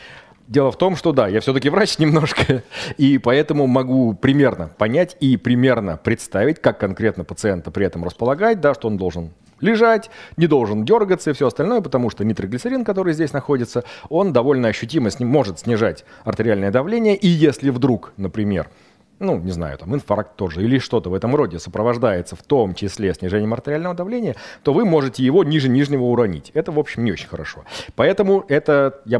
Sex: male